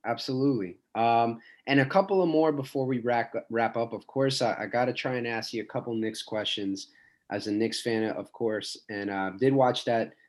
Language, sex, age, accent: English, male, 20-39, American